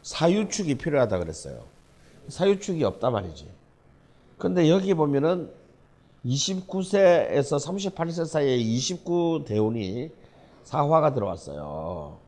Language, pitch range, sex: Korean, 105-160 Hz, male